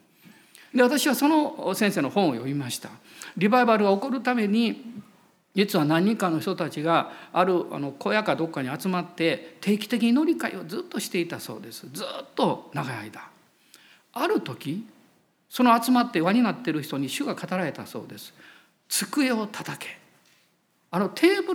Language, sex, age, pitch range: Japanese, male, 50-69, 170-260 Hz